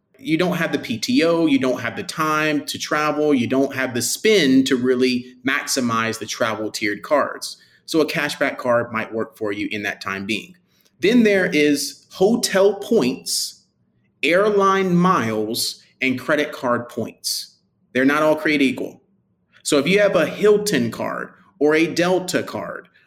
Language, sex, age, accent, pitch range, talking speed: English, male, 30-49, American, 125-185 Hz, 165 wpm